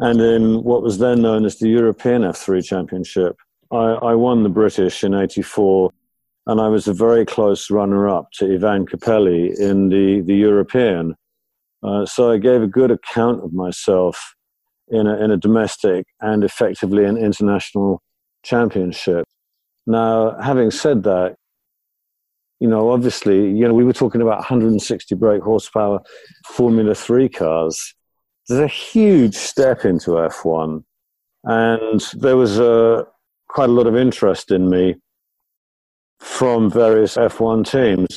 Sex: male